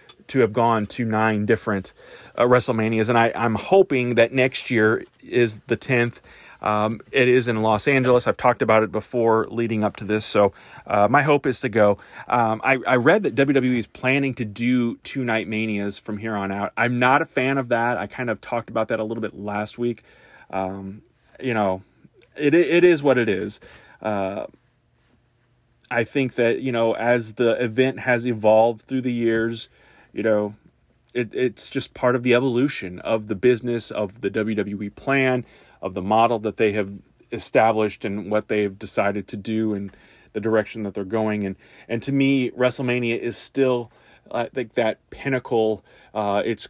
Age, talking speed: 30-49, 185 wpm